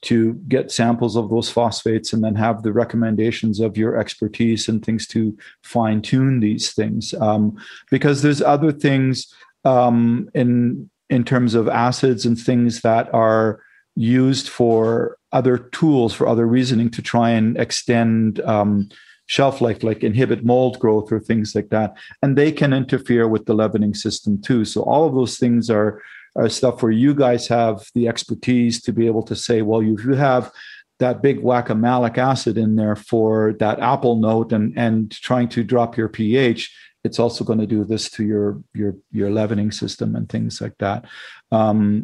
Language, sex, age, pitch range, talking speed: English, male, 40-59, 110-125 Hz, 180 wpm